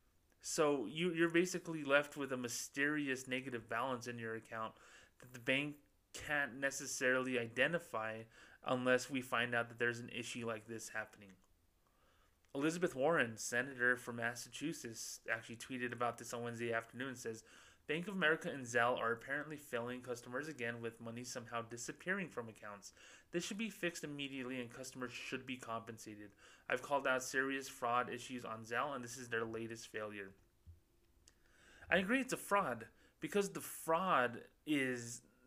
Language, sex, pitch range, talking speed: English, male, 115-135 Hz, 155 wpm